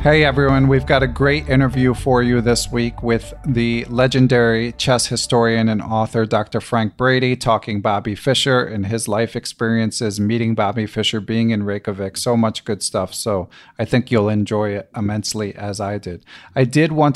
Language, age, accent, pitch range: English, 40-59, American, 110-130 Hz